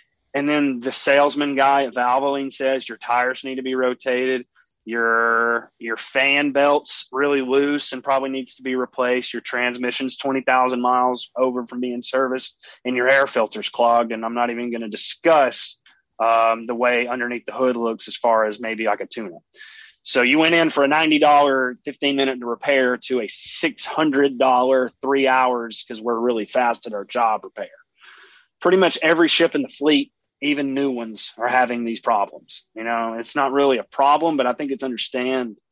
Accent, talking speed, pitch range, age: American, 185 wpm, 115-135 Hz, 30-49